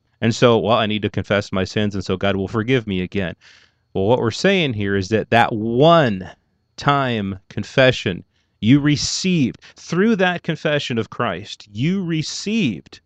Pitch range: 105-130 Hz